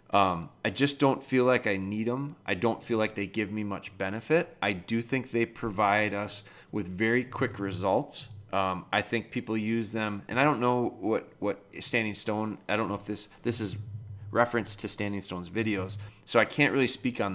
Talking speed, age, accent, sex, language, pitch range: 210 wpm, 30-49, American, male, English, 100-120 Hz